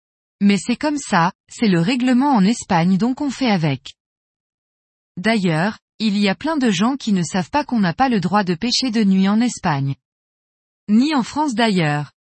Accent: French